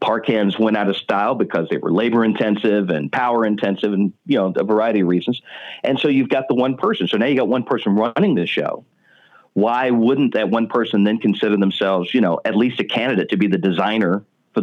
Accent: American